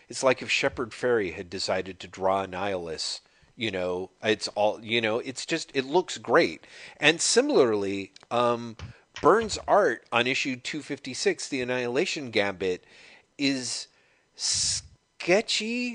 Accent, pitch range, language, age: American, 110-150 Hz, English, 40-59